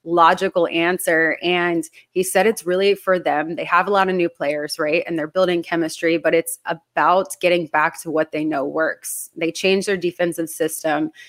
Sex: female